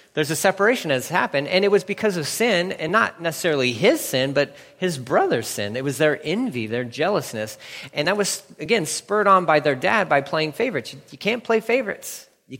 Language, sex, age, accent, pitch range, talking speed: English, male, 30-49, American, 130-185 Hz, 210 wpm